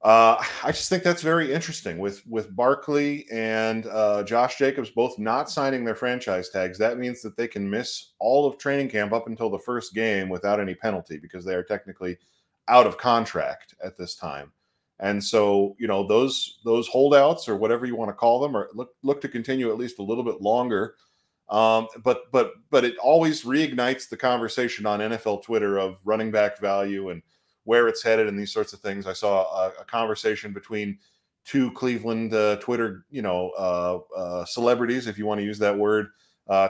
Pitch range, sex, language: 105-125 Hz, male, English